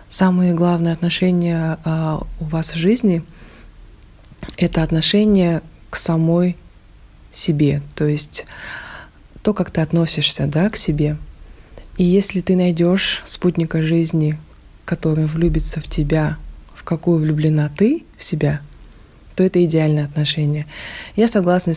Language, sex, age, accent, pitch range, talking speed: Russian, female, 20-39, native, 155-180 Hz, 120 wpm